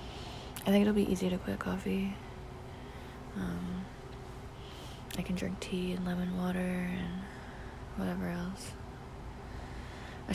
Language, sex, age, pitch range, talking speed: English, female, 20-39, 130-195 Hz, 115 wpm